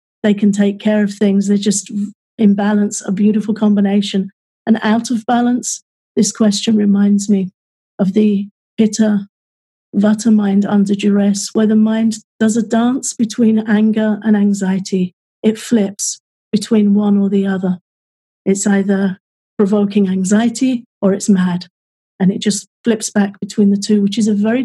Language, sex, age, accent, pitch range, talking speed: English, female, 40-59, British, 195-215 Hz, 155 wpm